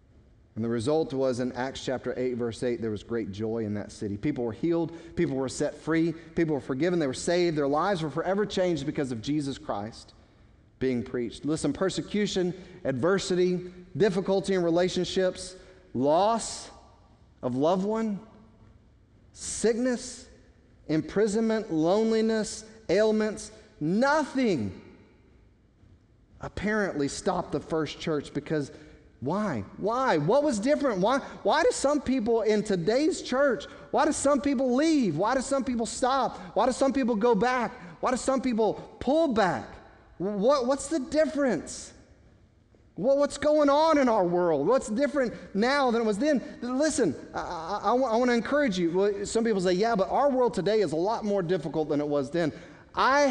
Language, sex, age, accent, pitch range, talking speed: English, male, 40-59, American, 150-240 Hz, 155 wpm